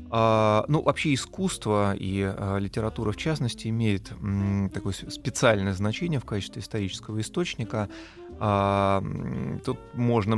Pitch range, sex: 100-115 Hz, male